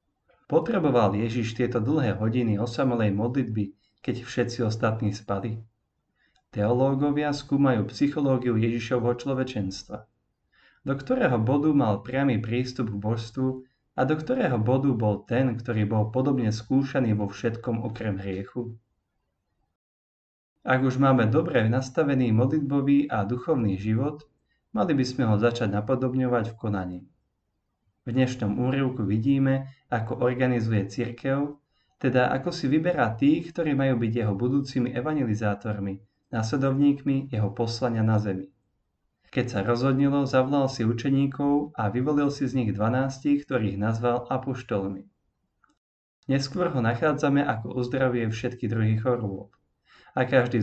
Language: Slovak